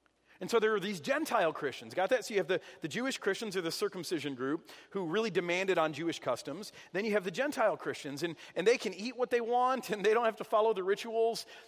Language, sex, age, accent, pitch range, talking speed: English, male, 40-59, American, 195-240 Hz, 245 wpm